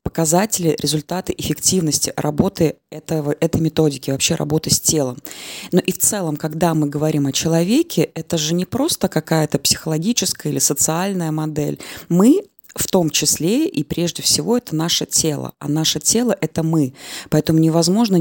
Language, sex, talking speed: Russian, female, 150 wpm